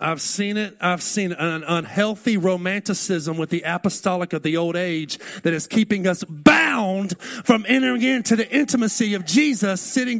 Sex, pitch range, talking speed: male, 195-245 Hz, 165 wpm